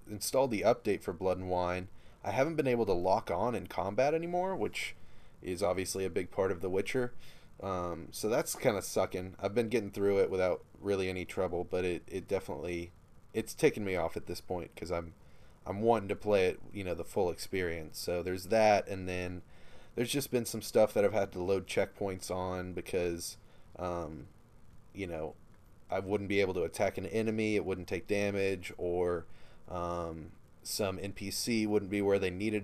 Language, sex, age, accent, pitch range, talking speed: English, male, 20-39, American, 90-105 Hz, 195 wpm